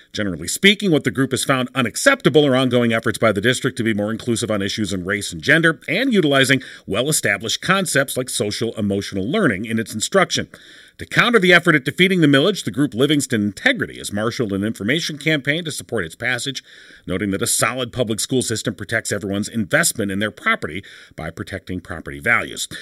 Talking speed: 190 wpm